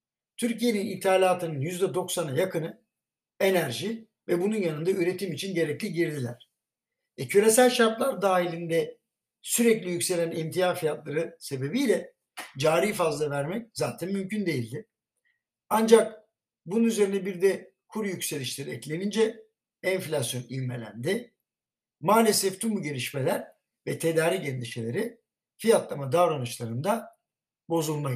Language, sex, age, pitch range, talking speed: Turkish, male, 60-79, 145-210 Hz, 100 wpm